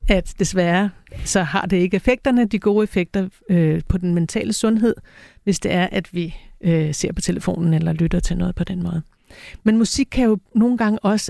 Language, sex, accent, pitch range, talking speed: Danish, female, native, 175-215 Hz, 200 wpm